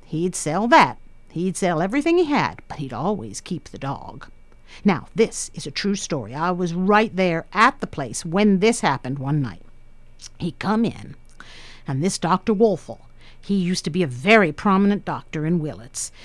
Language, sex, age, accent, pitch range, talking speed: English, female, 50-69, American, 165-230 Hz, 180 wpm